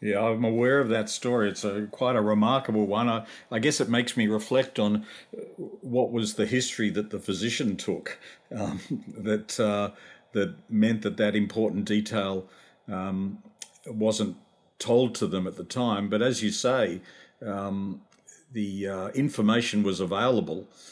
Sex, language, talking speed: male, English, 160 wpm